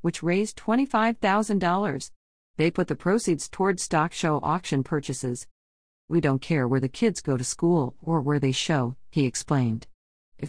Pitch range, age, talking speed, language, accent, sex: 140-180 Hz, 50-69, 160 wpm, English, American, female